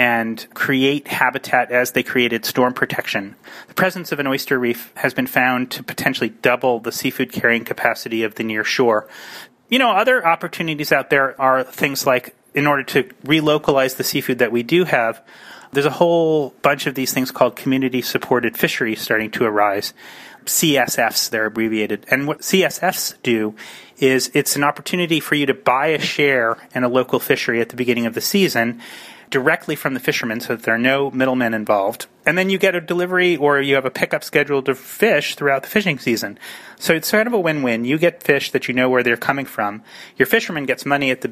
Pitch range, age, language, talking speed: 125-150 Hz, 30-49, English, 200 wpm